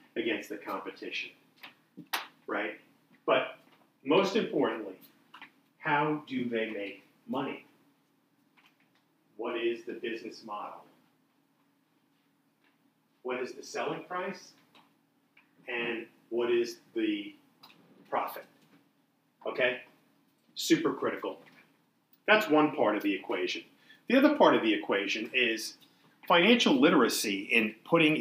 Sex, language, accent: male, English, American